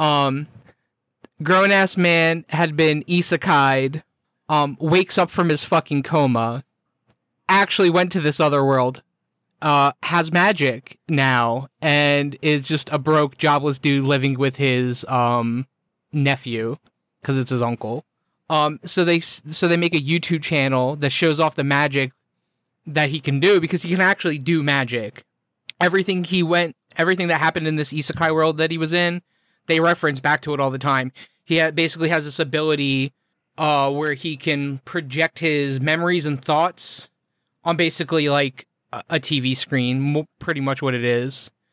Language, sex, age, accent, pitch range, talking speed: English, male, 20-39, American, 140-170 Hz, 160 wpm